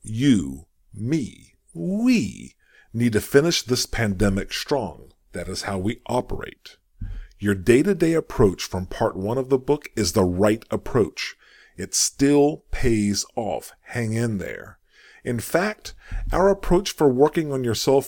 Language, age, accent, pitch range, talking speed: English, 50-69, American, 100-140 Hz, 140 wpm